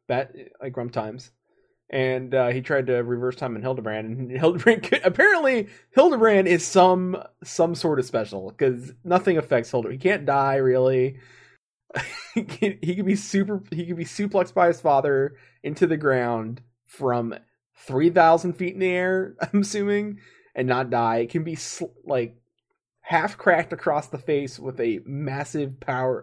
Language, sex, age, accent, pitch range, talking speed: English, male, 20-39, American, 120-165 Hz, 160 wpm